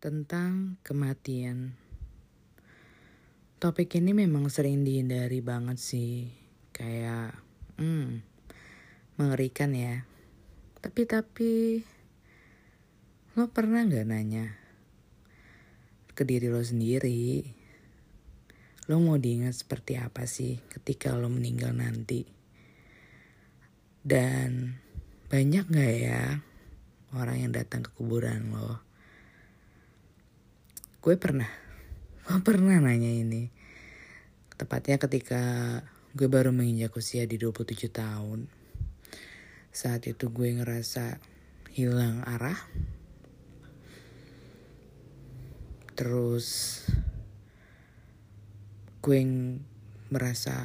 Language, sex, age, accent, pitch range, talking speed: Indonesian, female, 20-39, native, 115-135 Hz, 80 wpm